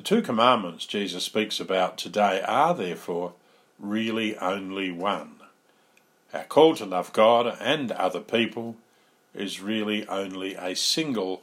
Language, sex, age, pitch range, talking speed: English, male, 50-69, 95-140 Hz, 130 wpm